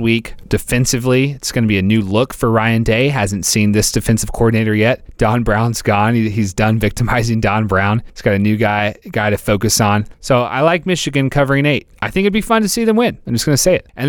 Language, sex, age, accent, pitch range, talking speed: English, male, 30-49, American, 105-135 Hz, 245 wpm